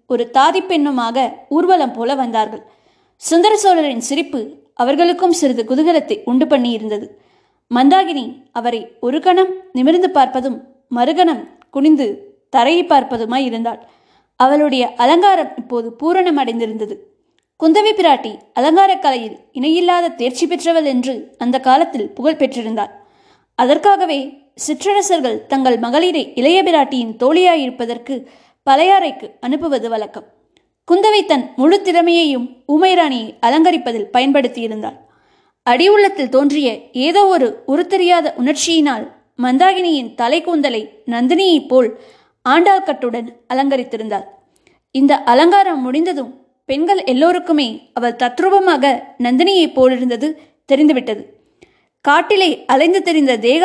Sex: female